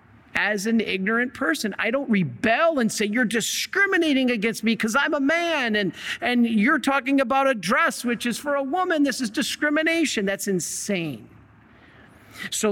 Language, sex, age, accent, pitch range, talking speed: English, male, 50-69, American, 180-255 Hz, 165 wpm